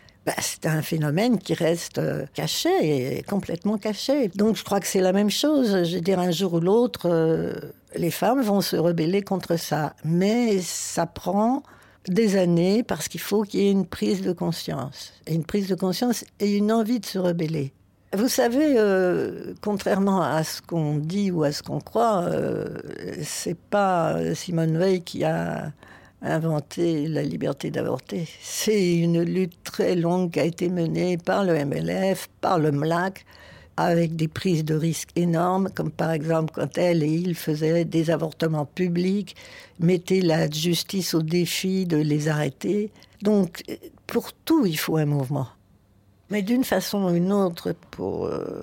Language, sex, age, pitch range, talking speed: French, female, 60-79, 160-195 Hz, 170 wpm